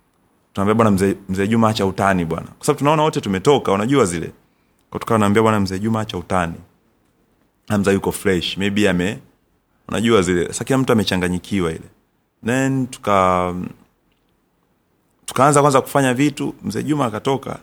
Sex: male